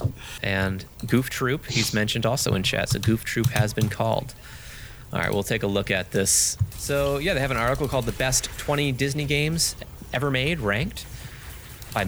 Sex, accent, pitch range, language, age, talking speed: male, American, 100-130 Hz, English, 30-49, 190 wpm